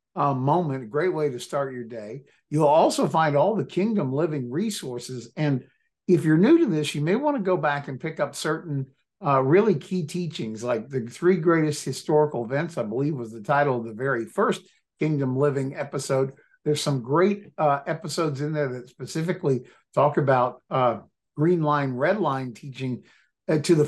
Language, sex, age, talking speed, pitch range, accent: English, male, 60-79, 185 wpm, 135-165 Hz, American